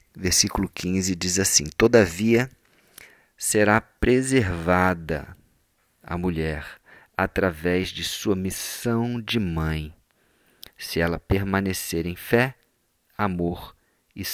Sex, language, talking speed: male, Portuguese, 90 wpm